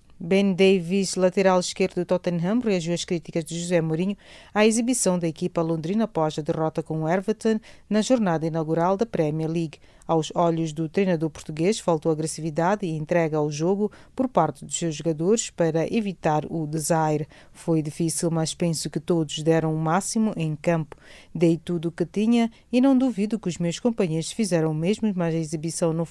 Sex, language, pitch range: female, English, 160-195 Hz